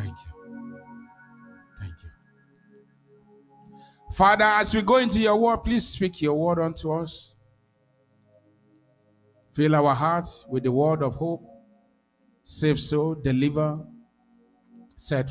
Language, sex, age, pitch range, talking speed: English, male, 50-69, 130-170 Hz, 115 wpm